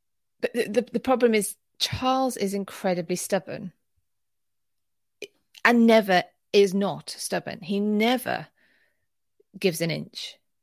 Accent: British